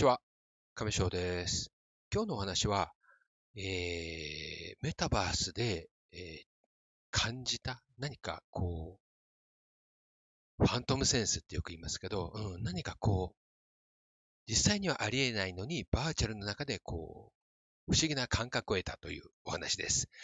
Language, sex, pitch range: Japanese, male, 95-155 Hz